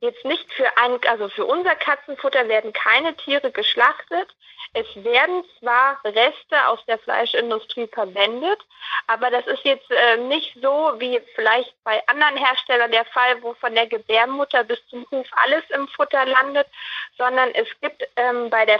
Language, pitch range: German, 230-275 Hz